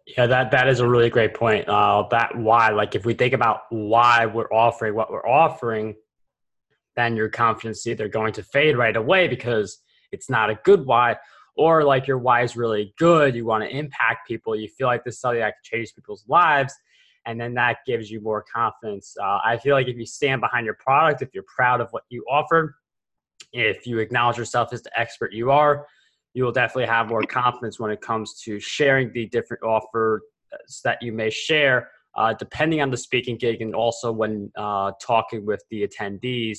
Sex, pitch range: male, 110-135 Hz